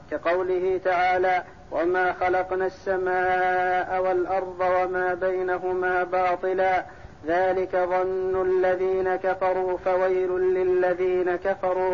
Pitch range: 180-190 Hz